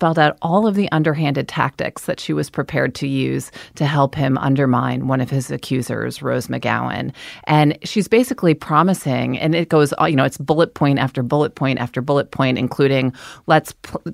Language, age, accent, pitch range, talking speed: English, 30-49, American, 130-160 Hz, 185 wpm